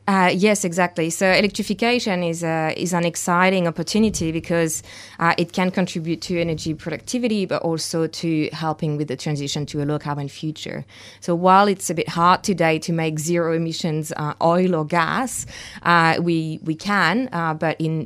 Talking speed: 175 wpm